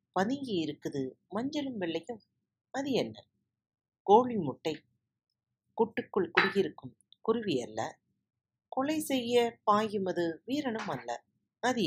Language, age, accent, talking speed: Tamil, 40-59, native, 95 wpm